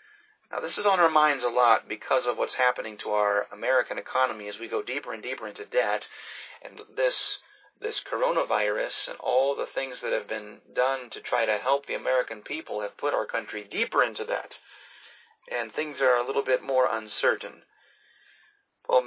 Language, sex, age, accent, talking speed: English, male, 30-49, American, 185 wpm